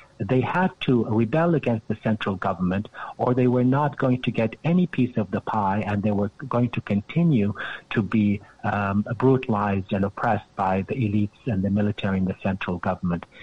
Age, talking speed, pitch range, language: 60-79, 190 wpm, 105-130 Hz, English